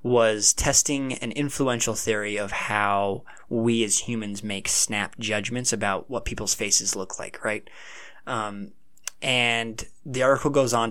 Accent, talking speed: American, 145 wpm